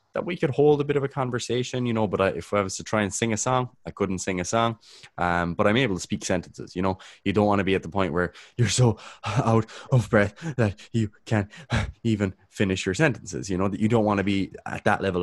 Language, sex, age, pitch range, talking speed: English, male, 20-39, 85-110 Hz, 265 wpm